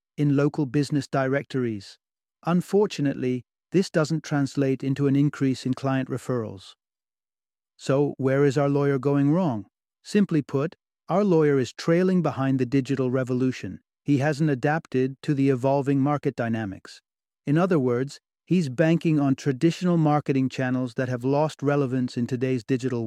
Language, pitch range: English, 130-155 Hz